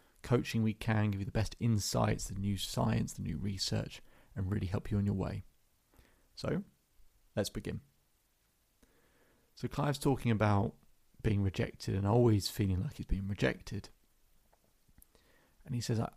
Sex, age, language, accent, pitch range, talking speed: male, 30-49, English, British, 100-125 Hz, 150 wpm